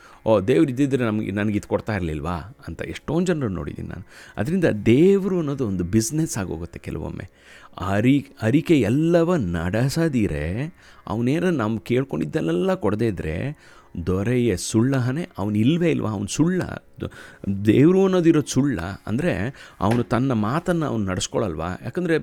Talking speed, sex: 120 wpm, male